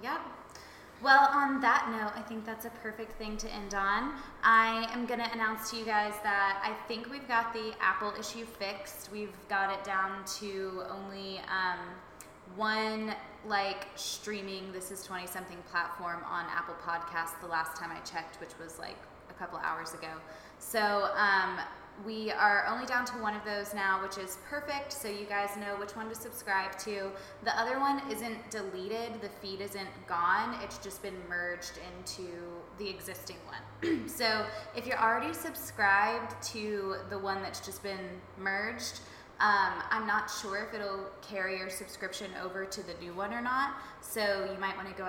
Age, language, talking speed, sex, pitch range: 20-39, English, 180 wpm, female, 190-225 Hz